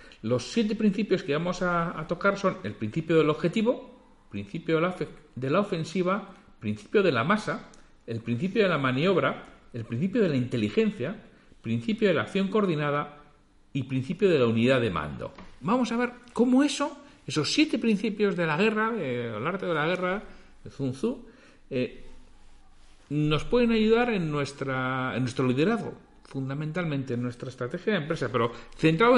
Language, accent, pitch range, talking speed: Spanish, Spanish, 125-205 Hz, 160 wpm